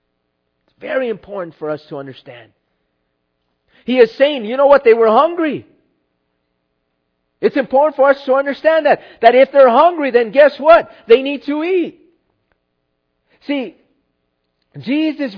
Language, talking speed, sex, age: English, 135 wpm, male, 50-69